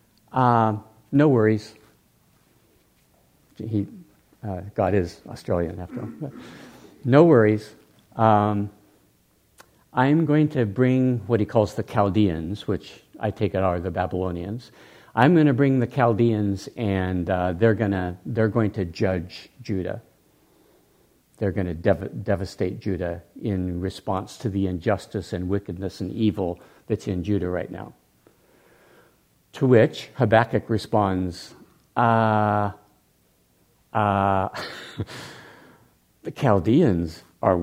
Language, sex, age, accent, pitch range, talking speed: English, male, 60-79, American, 95-120 Hz, 115 wpm